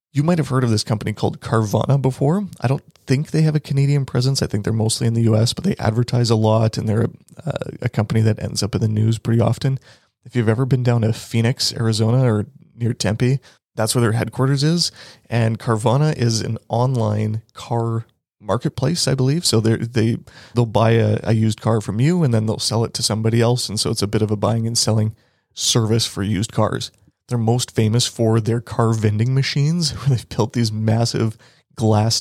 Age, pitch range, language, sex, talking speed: 30-49, 110-130 Hz, English, male, 210 wpm